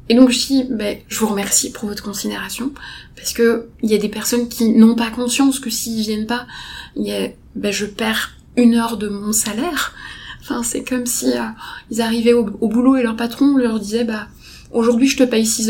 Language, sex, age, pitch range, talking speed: French, female, 20-39, 220-265 Hz, 225 wpm